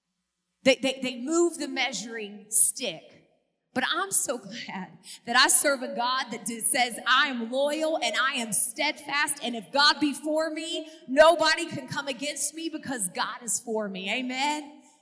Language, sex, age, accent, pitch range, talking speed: English, female, 40-59, American, 180-250 Hz, 170 wpm